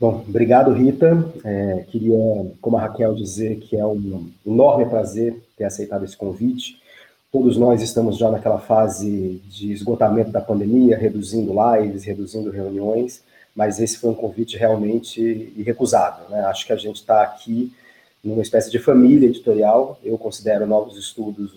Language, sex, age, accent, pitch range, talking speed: Portuguese, male, 30-49, Brazilian, 105-120 Hz, 155 wpm